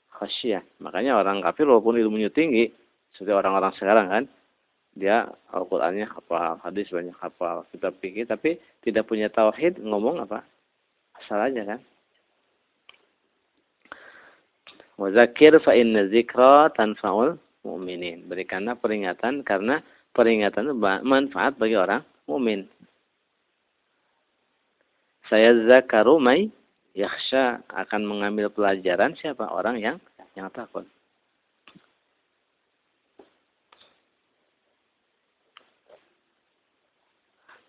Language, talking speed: Indonesian, 80 wpm